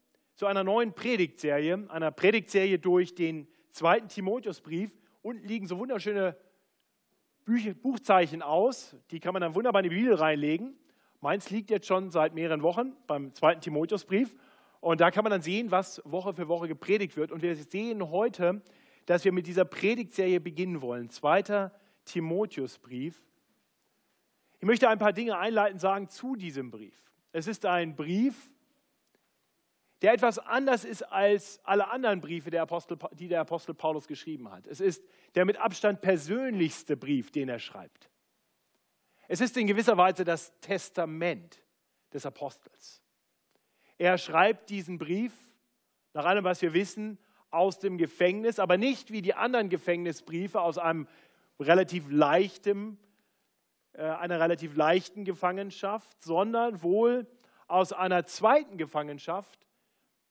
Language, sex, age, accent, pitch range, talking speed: German, male, 40-59, German, 170-210 Hz, 135 wpm